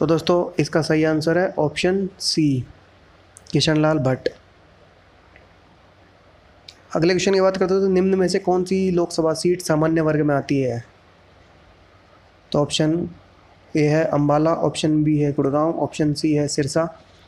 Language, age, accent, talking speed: Hindi, 20-39, native, 145 wpm